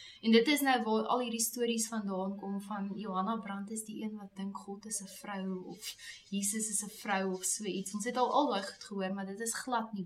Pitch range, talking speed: 185-230 Hz, 245 wpm